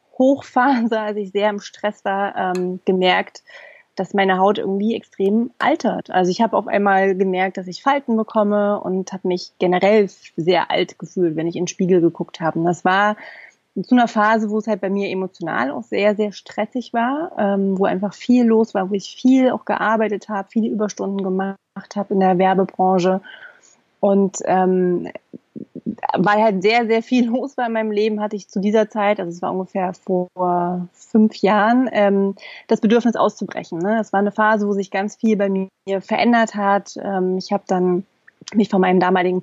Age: 30-49